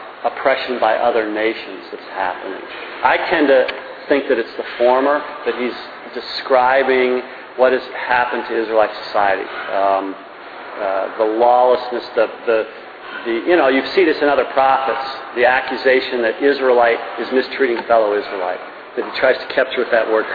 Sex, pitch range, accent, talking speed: male, 125-175 Hz, American, 160 wpm